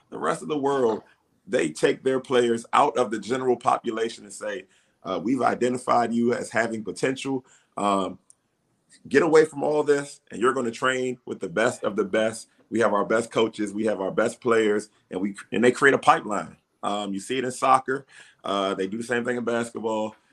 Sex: male